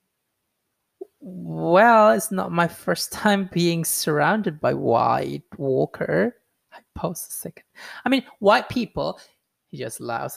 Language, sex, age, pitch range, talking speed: English, male, 20-39, 135-185 Hz, 125 wpm